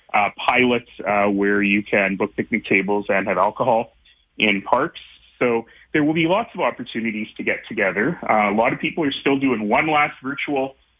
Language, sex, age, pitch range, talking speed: English, male, 30-49, 105-135 Hz, 185 wpm